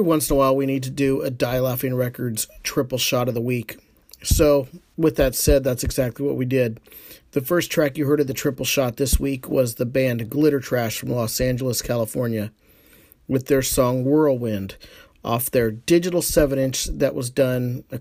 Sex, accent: male, American